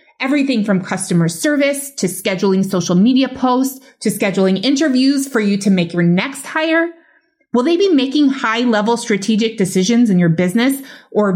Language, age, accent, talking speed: English, 30-49, American, 160 wpm